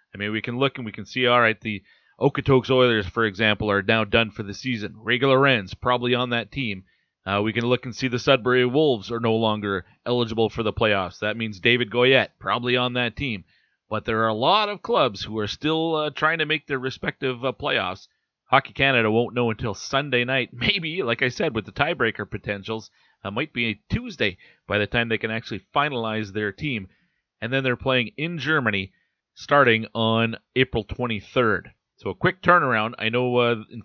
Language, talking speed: English, 210 wpm